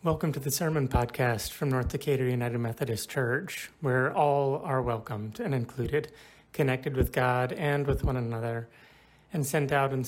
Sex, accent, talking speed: male, American, 165 wpm